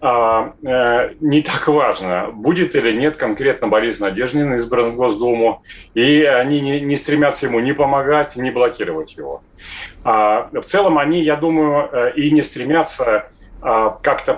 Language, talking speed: Russian, 140 wpm